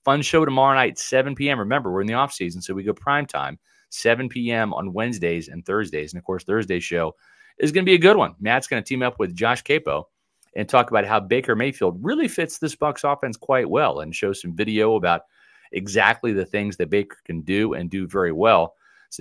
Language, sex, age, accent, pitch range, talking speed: English, male, 40-59, American, 95-130 Hz, 220 wpm